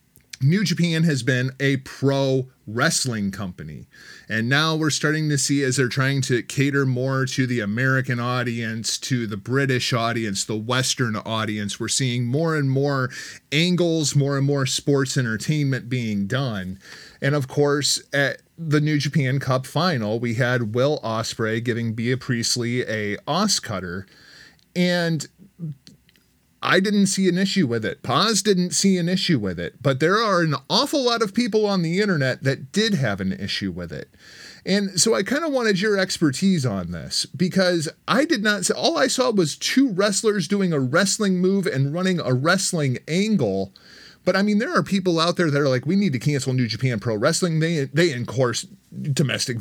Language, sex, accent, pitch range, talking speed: English, male, American, 125-180 Hz, 180 wpm